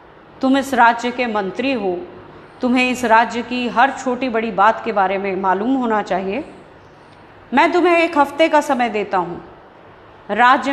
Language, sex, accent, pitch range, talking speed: Hindi, female, native, 215-280 Hz, 160 wpm